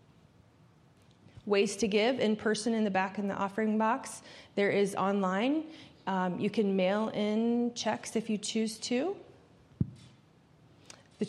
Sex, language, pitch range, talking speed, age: female, English, 195-240 Hz, 140 wpm, 30-49